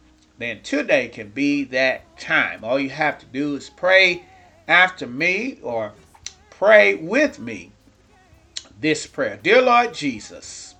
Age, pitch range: 40-59, 140-195 Hz